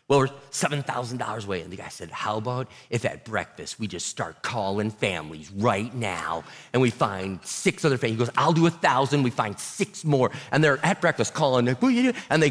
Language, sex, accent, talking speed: English, male, American, 205 wpm